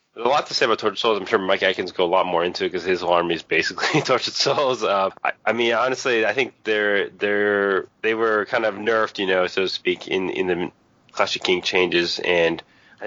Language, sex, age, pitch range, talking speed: English, male, 20-39, 85-115 Hz, 255 wpm